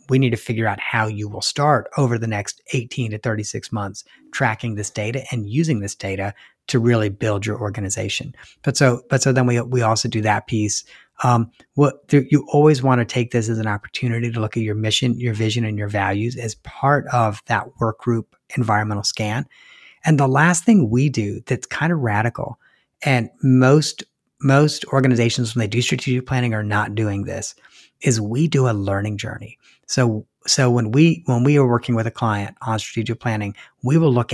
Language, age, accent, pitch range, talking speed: English, 30-49, American, 110-130 Hz, 200 wpm